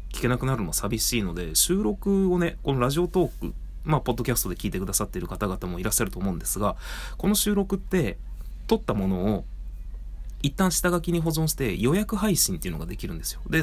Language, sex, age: Japanese, male, 30-49